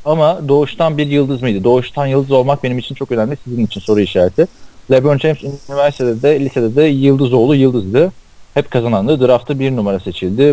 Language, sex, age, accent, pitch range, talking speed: Turkish, male, 40-59, native, 100-135 Hz, 175 wpm